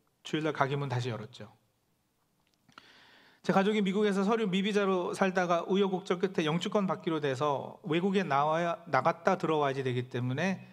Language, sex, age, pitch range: Korean, male, 40-59, 140-195 Hz